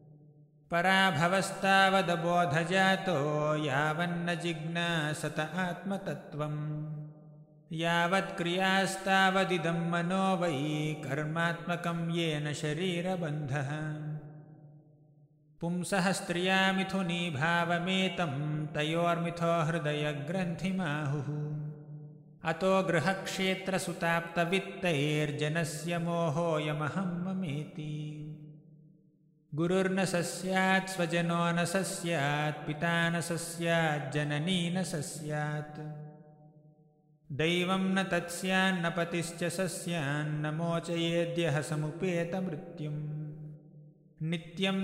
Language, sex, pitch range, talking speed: English, male, 150-175 Hz, 40 wpm